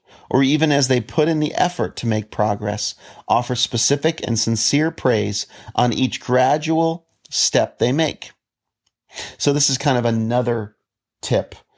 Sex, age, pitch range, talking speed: male, 40-59, 105-130 Hz, 150 wpm